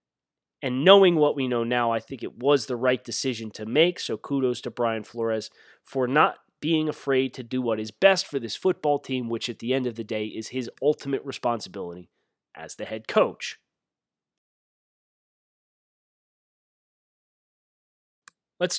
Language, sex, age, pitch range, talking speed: English, male, 30-49, 125-175 Hz, 155 wpm